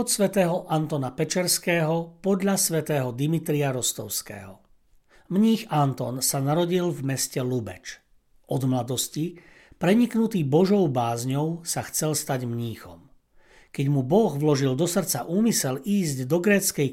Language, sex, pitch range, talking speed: Slovak, male, 135-185 Hz, 120 wpm